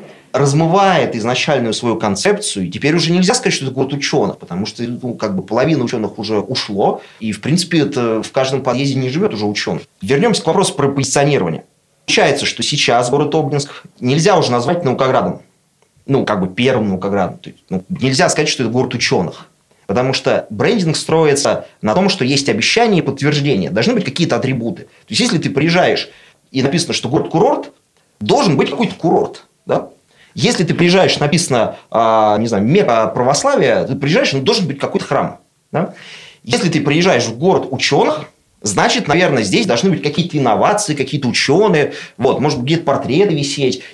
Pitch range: 125-175 Hz